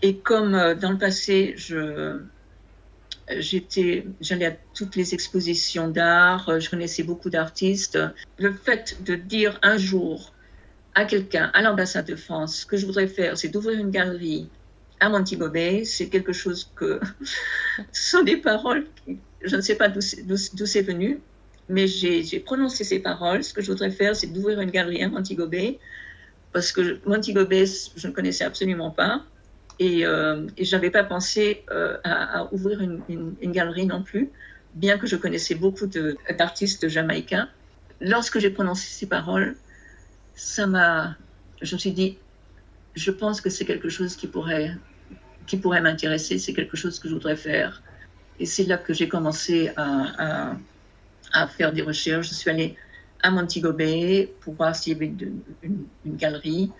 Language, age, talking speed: French, 50-69, 175 wpm